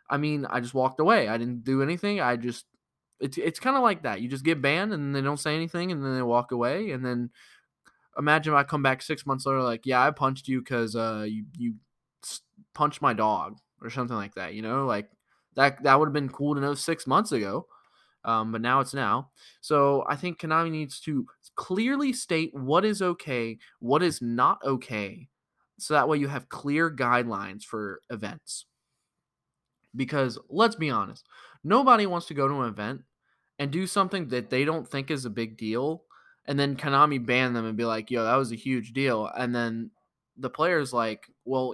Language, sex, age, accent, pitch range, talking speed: English, male, 10-29, American, 120-155 Hz, 205 wpm